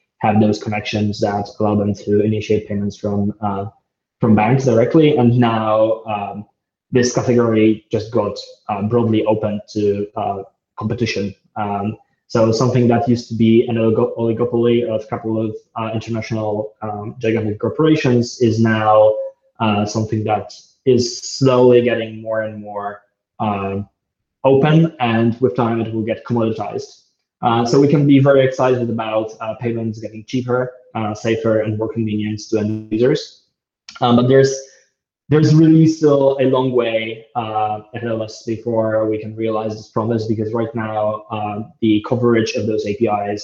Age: 20-39